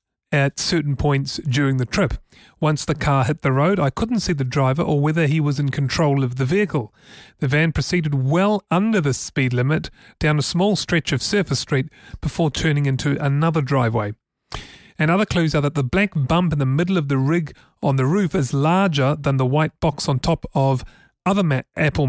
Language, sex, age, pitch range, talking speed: English, male, 30-49, 135-165 Hz, 200 wpm